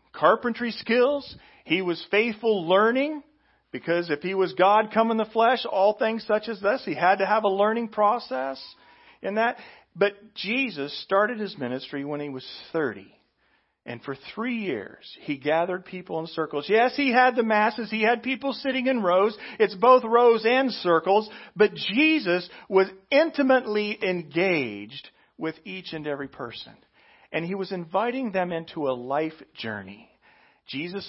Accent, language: American, English